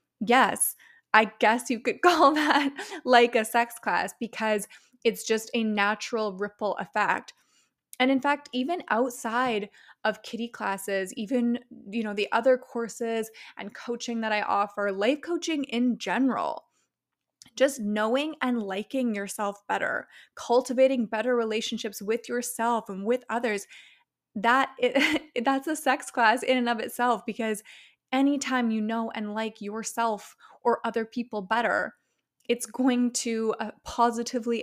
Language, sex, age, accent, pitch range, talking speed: English, female, 20-39, American, 220-255 Hz, 140 wpm